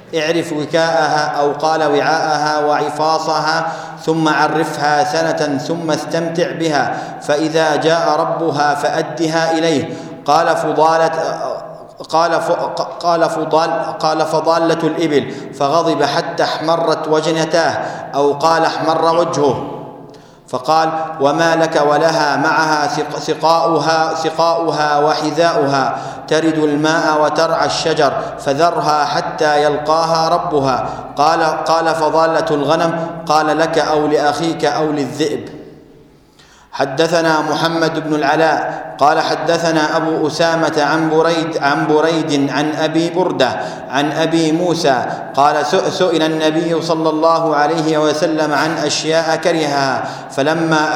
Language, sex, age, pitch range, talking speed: Arabic, male, 40-59, 150-165 Hz, 105 wpm